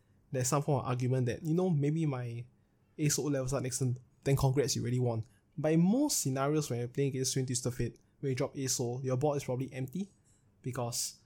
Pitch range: 120-140 Hz